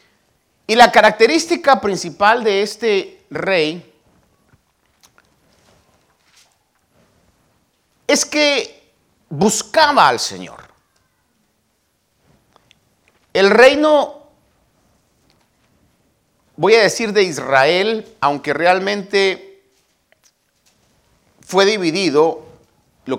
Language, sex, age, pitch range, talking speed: Spanish, male, 50-69, 155-225 Hz, 60 wpm